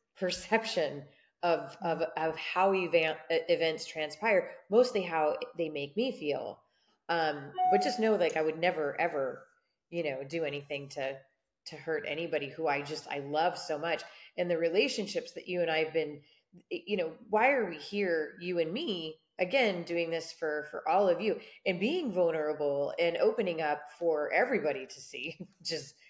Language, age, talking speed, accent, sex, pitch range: English, 30-49, 170 wpm, American, female, 150-185 Hz